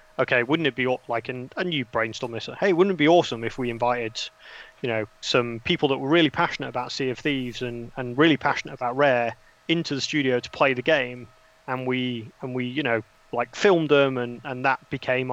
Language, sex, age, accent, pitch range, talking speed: English, male, 30-49, British, 120-140 Hz, 220 wpm